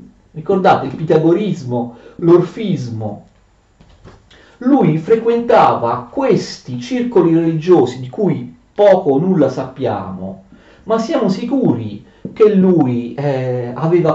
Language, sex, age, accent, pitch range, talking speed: Italian, male, 40-59, native, 125-175 Hz, 95 wpm